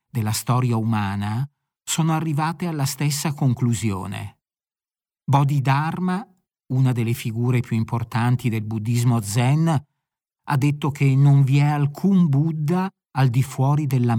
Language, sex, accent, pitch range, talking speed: Italian, male, native, 125-150 Hz, 125 wpm